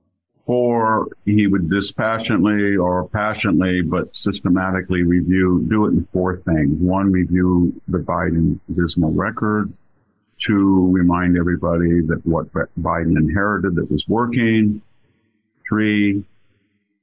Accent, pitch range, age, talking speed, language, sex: American, 85-105 Hz, 50-69, 110 wpm, English, male